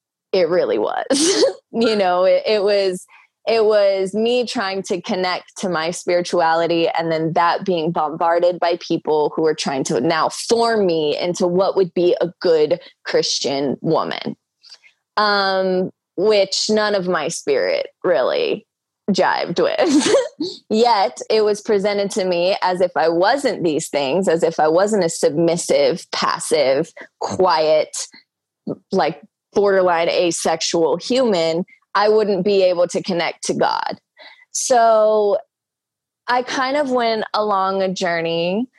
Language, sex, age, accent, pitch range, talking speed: English, female, 20-39, American, 180-245 Hz, 135 wpm